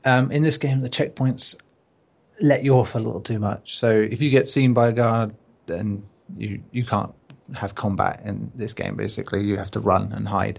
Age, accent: 30-49, British